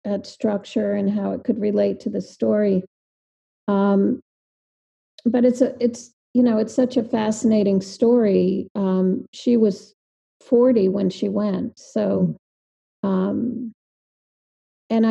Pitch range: 205-240 Hz